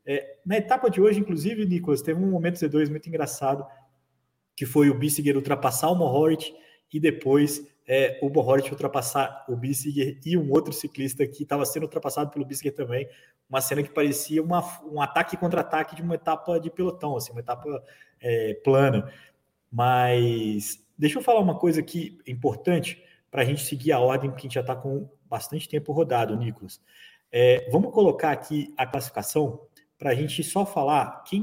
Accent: Brazilian